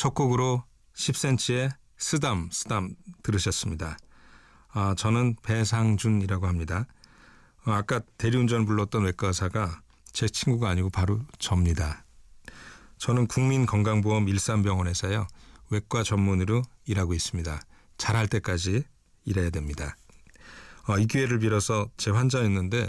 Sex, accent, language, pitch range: male, native, Korean, 95-115 Hz